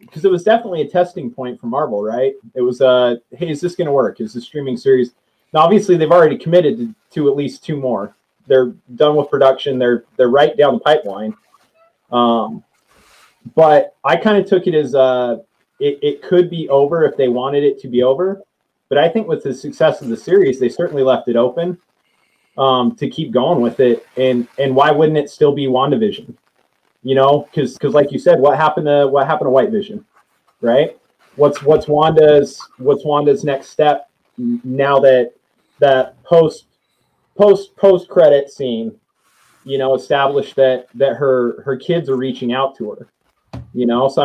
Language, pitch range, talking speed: English, 130-155 Hz, 190 wpm